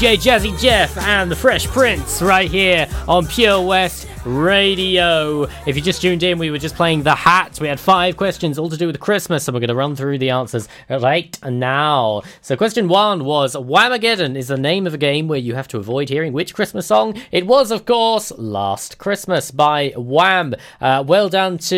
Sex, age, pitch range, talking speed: male, 10-29, 140-190 Hz, 205 wpm